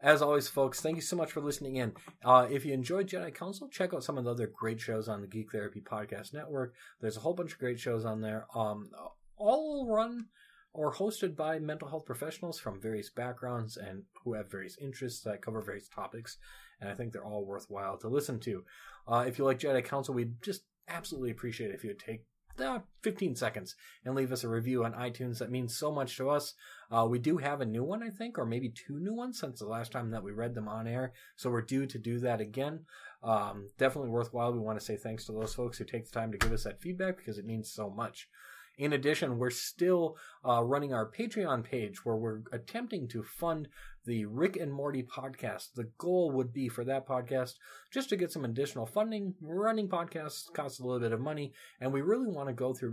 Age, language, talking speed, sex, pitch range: 30-49, English, 230 wpm, male, 115-155 Hz